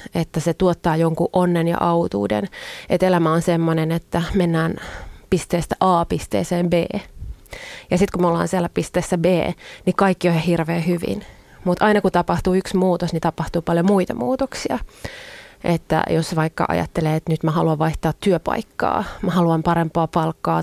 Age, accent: 30-49, native